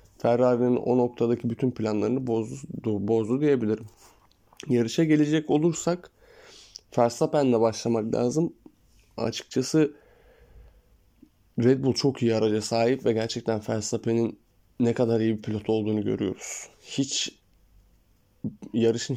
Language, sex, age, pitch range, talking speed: Turkish, male, 20-39, 110-125 Hz, 105 wpm